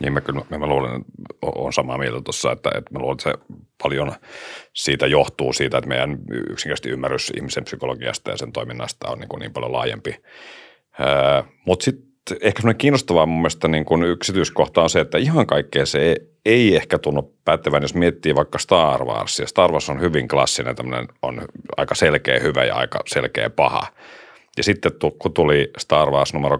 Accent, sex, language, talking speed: native, male, Finnish, 185 wpm